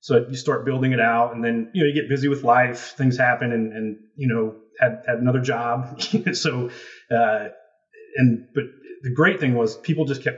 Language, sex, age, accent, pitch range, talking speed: English, male, 30-49, American, 115-145 Hz, 210 wpm